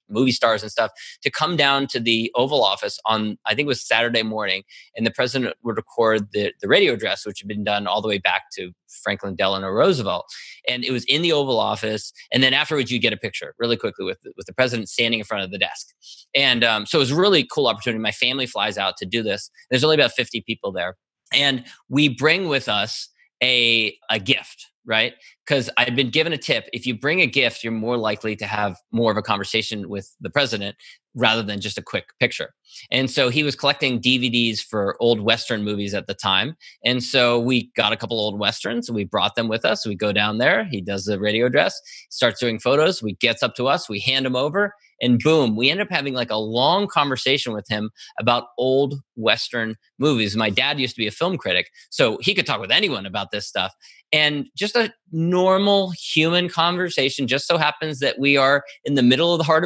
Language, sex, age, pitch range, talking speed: English, male, 20-39, 110-145 Hz, 225 wpm